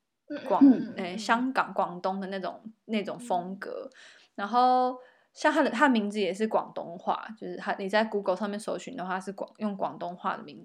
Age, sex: 20-39, female